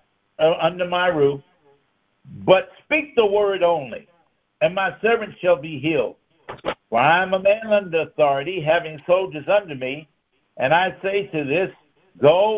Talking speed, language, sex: 150 wpm, English, male